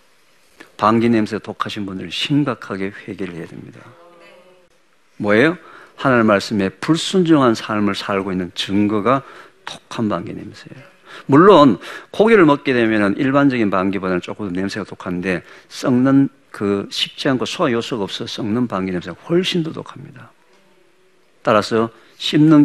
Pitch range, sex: 105-175 Hz, male